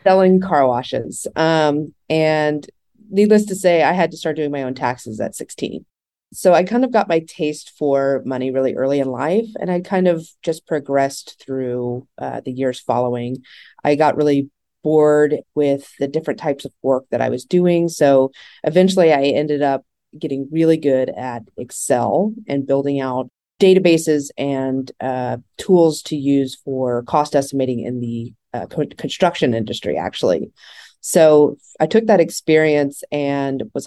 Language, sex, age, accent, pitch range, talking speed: English, female, 30-49, American, 130-160 Hz, 160 wpm